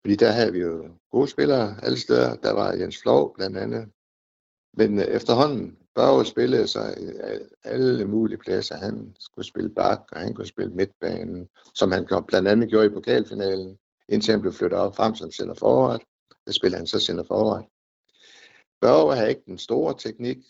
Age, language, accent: 60-79, Danish, native